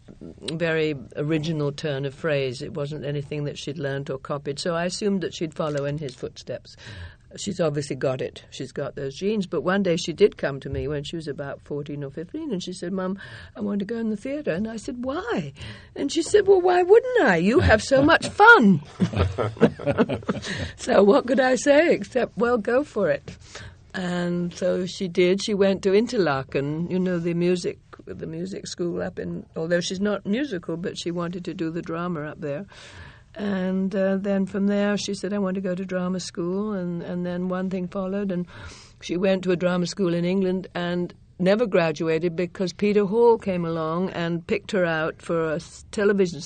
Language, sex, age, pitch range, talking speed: English, female, 60-79, 155-200 Hz, 200 wpm